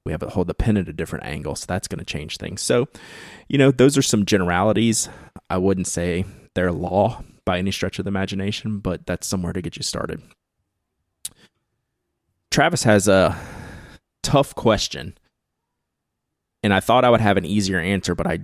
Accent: American